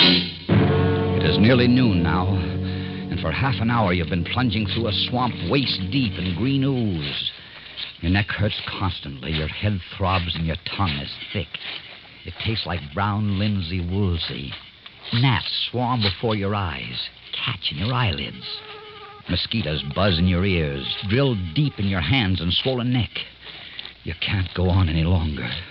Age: 50-69